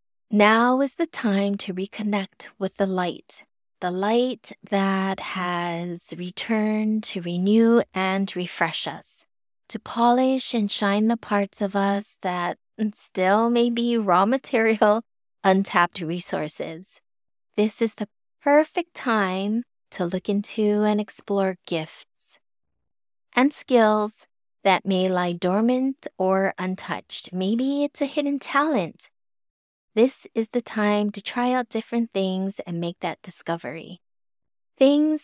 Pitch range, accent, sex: 180-235 Hz, American, female